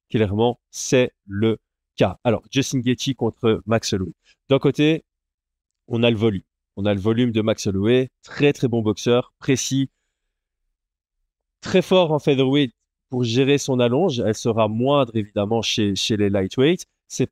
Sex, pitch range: male, 105-135 Hz